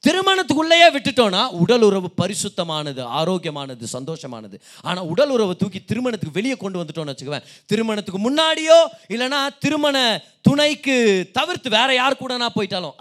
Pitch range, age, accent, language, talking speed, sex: 185-270 Hz, 30-49, native, Tamil, 120 wpm, male